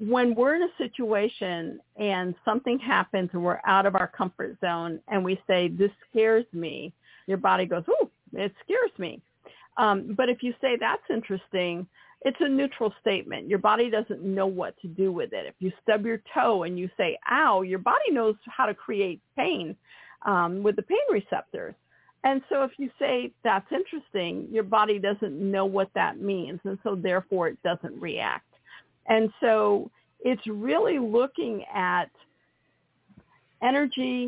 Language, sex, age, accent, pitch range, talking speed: English, female, 50-69, American, 185-235 Hz, 170 wpm